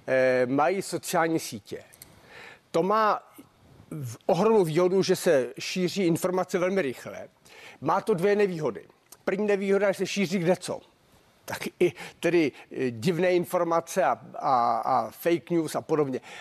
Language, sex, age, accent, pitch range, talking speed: Czech, male, 50-69, native, 155-195 Hz, 130 wpm